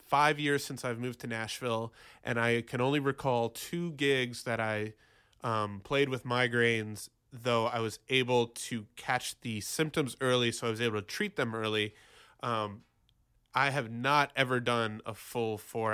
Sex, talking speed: male, 175 wpm